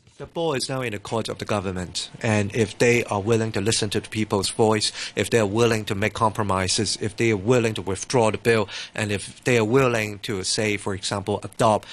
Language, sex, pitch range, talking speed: English, male, 100-125 Hz, 230 wpm